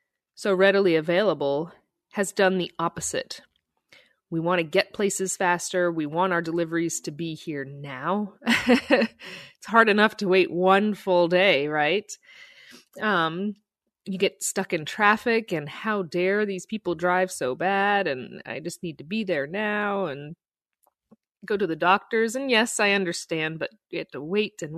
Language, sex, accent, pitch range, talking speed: English, female, American, 165-215 Hz, 160 wpm